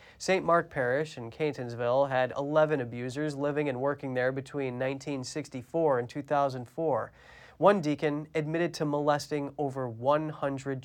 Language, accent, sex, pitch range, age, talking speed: English, American, male, 130-165 Hz, 30-49, 125 wpm